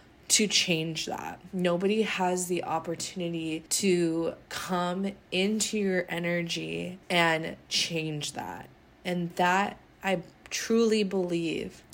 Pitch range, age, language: 165-195 Hz, 20-39, English